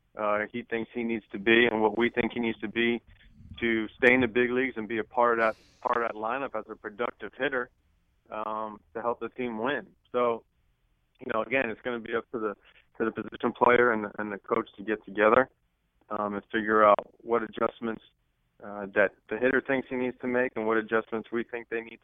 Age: 20-39